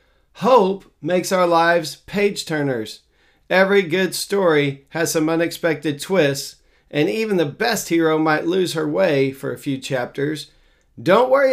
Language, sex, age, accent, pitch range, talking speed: English, male, 40-59, American, 145-175 Hz, 140 wpm